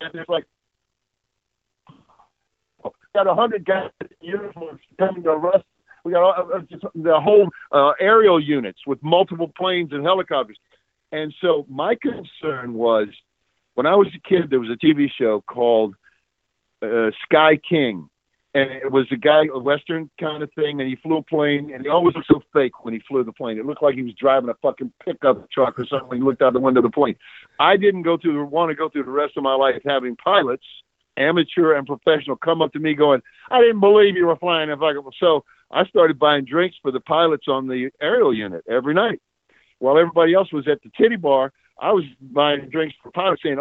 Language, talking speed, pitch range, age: English, 205 wpm, 140-180 Hz, 50-69